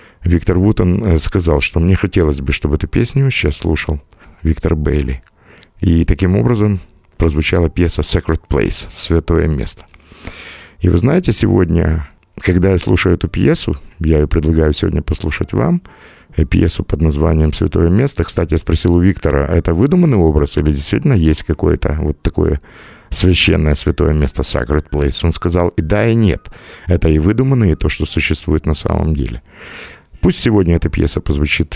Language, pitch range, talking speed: Russian, 75-90 Hz, 160 wpm